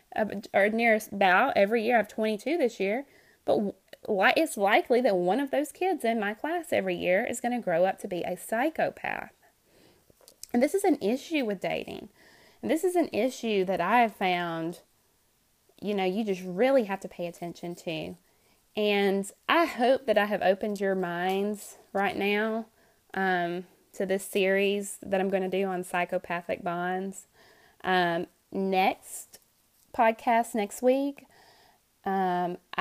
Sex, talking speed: female, 160 wpm